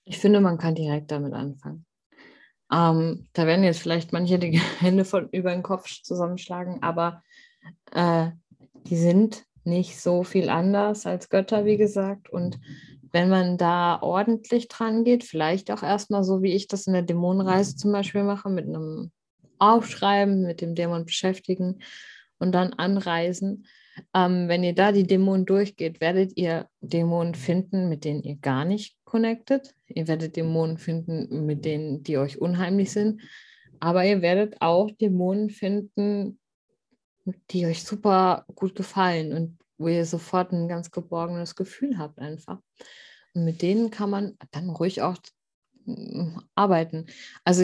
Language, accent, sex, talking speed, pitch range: German, German, female, 150 wpm, 165-200 Hz